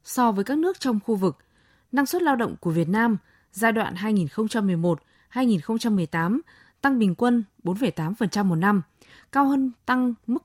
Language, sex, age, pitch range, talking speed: Vietnamese, female, 20-39, 185-240 Hz, 155 wpm